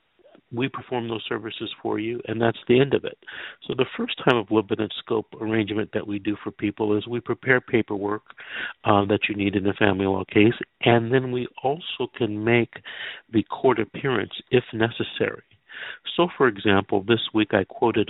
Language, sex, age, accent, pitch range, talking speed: English, male, 50-69, American, 100-115 Hz, 185 wpm